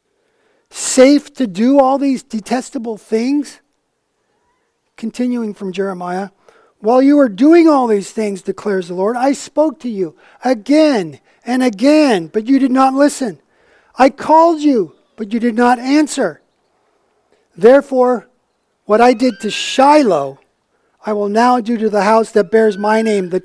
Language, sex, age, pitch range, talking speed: English, male, 40-59, 210-270 Hz, 150 wpm